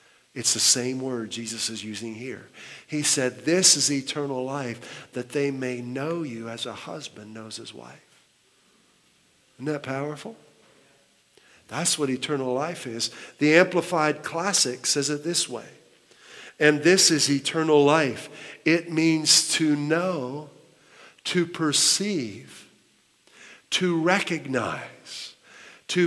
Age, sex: 50-69, male